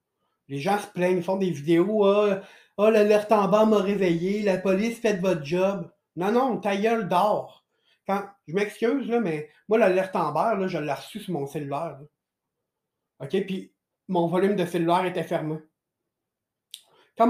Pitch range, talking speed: 155-200 Hz, 185 wpm